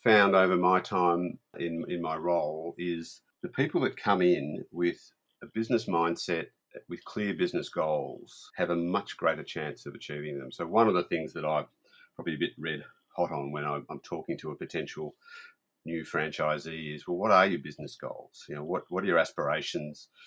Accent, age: Australian, 50-69